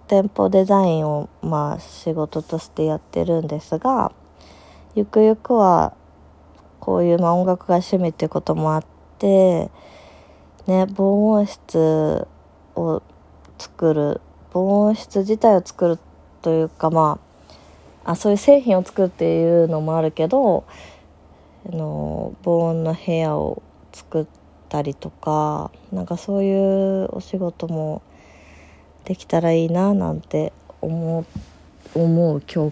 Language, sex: Japanese, female